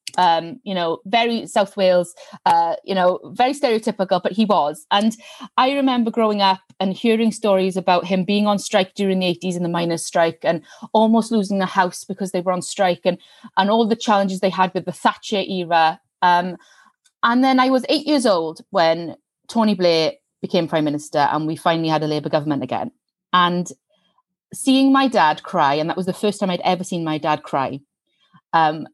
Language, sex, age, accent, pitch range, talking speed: English, female, 30-49, British, 165-210 Hz, 195 wpm